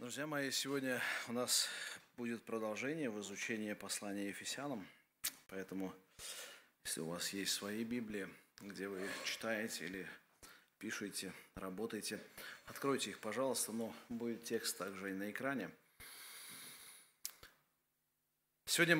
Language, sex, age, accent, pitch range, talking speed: Russian, male, 30-49, native, 115-150 Hz, 110 wpm